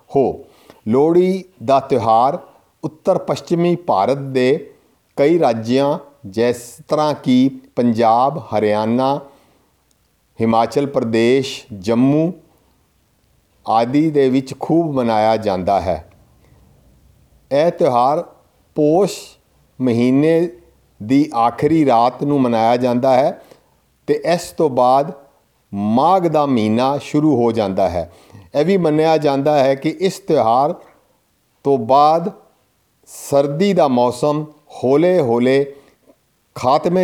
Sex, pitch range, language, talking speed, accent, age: male, 120-155 Hz, English, 95 wpm, Indian, 50-69